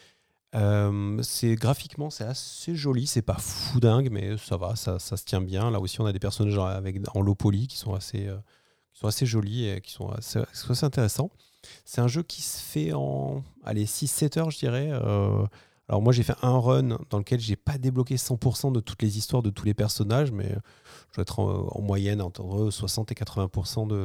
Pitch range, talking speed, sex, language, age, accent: 100-125 Hz, 210 wpm, male, French, 30-49, French